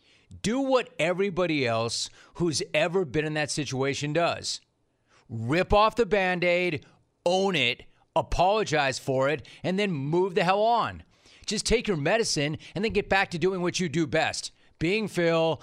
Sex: male